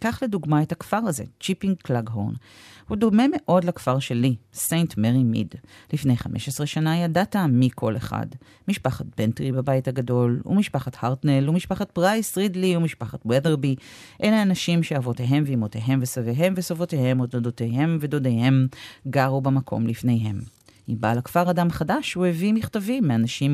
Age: 40-59